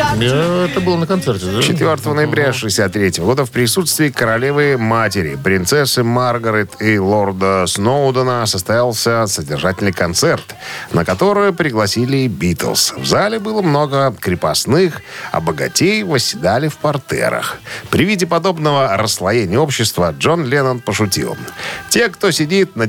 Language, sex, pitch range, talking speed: Russian, male, 100-155 Hz, 120 wpm